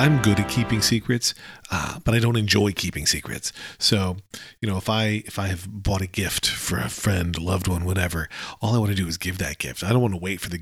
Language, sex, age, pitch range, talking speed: English, male, 40-59, 95-125 Hz, 255 wpm